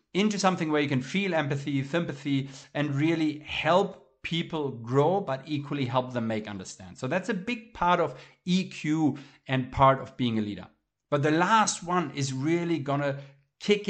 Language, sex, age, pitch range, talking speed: English, male, 50-69, 130-180 Hz, 175 wpm